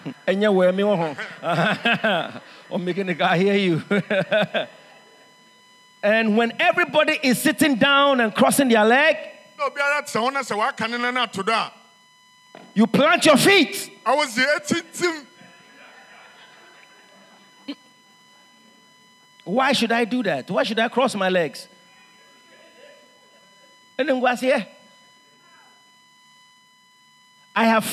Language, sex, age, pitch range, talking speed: English, male, 50-69, 210-305 Hz, 75 wpm